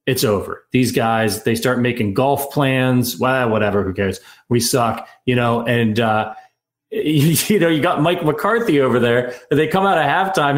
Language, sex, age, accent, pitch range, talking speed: English, male, 30-49, American, 115-150 Hz, 195 wpm